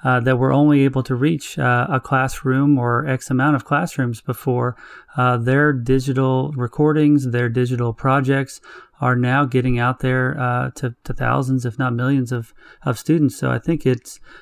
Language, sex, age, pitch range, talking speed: English, male, 30-49, 120-135 Hz, 175 wpm